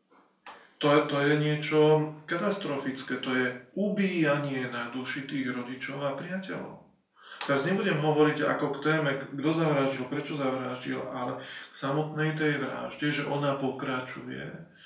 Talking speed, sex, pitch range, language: 125 wpm, male, 140-170 Hz, Slovak